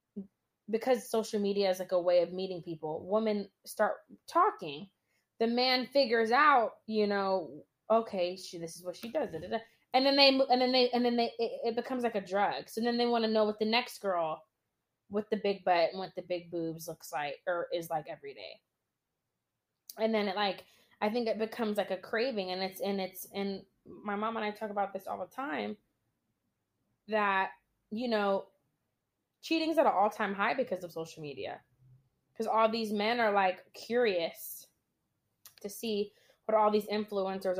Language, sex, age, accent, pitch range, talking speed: English, female, 20-39, American, 180-225 Hz, 195 wpm